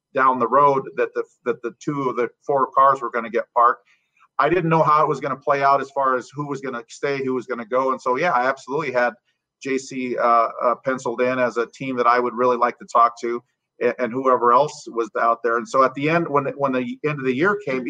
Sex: male